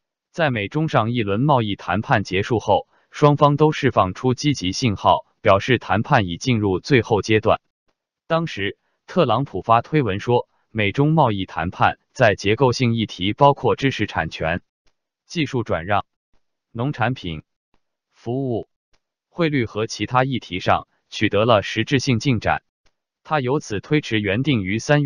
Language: Chinese